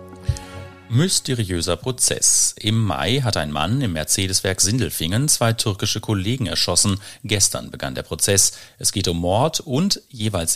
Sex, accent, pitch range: male, German, 95-125 Hz